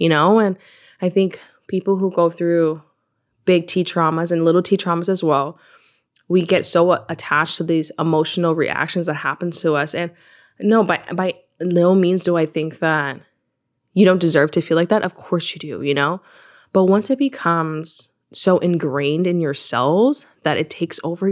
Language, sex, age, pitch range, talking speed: English, female, 20-39, 160-190 Hz, 185 wpm